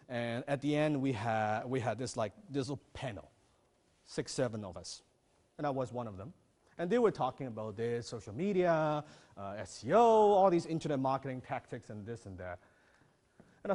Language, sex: English, male